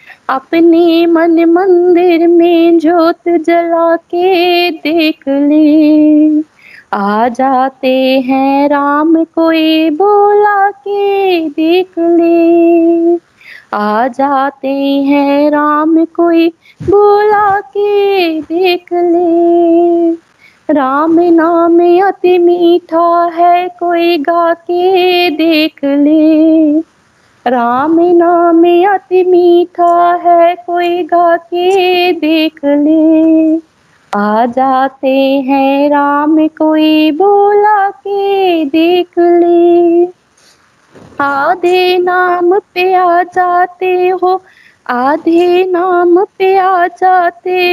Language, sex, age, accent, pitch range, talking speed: Hindi, female, 20-39, native, 310-360 Hz, 85 wpm